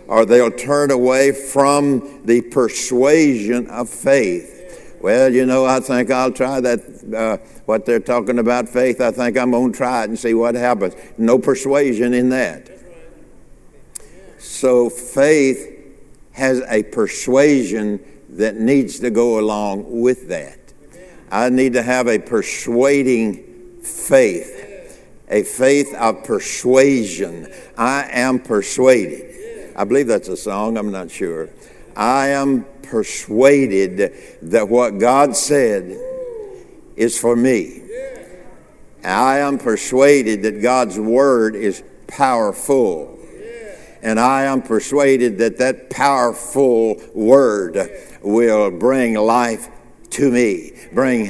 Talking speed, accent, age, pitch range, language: 120 wpm, American, 60-79, 120-140 Hz, English